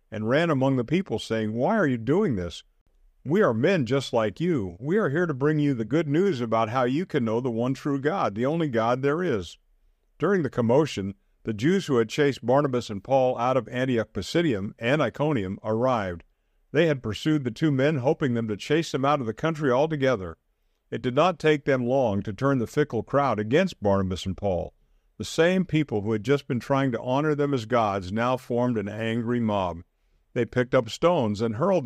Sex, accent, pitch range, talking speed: male, American, 105-140 Hz, 210 wpm